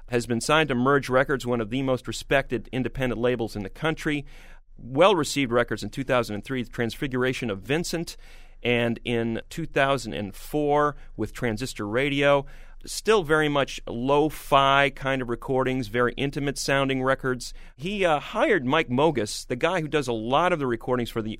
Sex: male